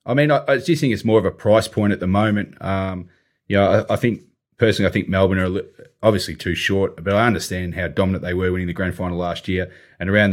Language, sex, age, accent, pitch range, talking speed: English, male, 30-49, Australian, 90-110 Hz, 265 wpm